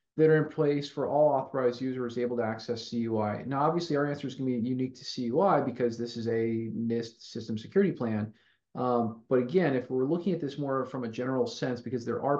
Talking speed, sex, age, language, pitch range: 225 wpm, male, 30-49, English, 120-150 Hz